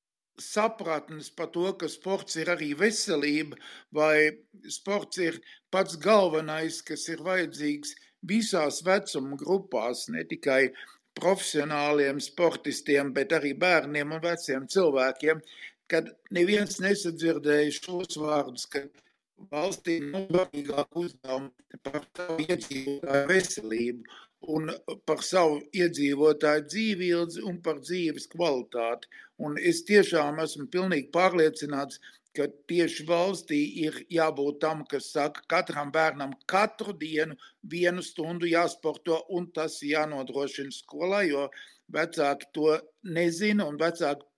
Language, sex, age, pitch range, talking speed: English, male, 60-79, 150-185 Hz, 105 wpm